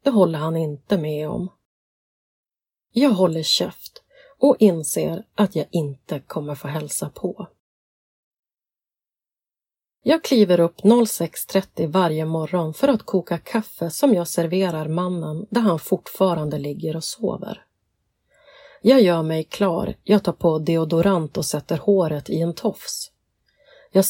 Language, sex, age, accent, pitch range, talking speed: Swedish, female, 30-49, native, 165-215 Hz, 130 wpm